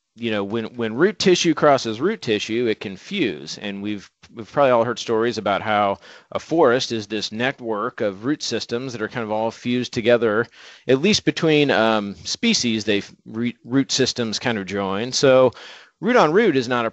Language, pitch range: English, 110-140 Hz